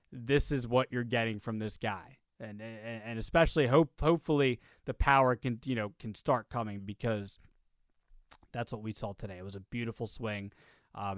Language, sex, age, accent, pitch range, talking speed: English, male, 20-39, American, 110-140 Hz, 180 wpm